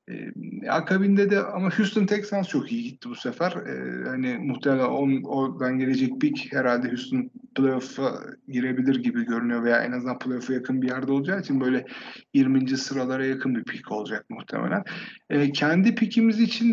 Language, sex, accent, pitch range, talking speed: Turkish, male, native, 120-185 Hz, 160 wpm